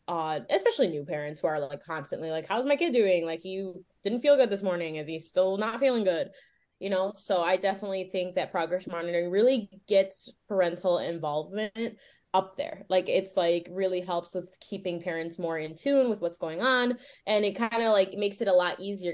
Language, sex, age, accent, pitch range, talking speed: English, female, 10-29, American, 170-215 Hz, 205 wpm